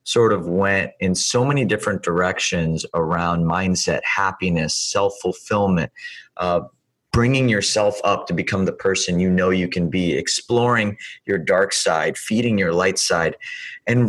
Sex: male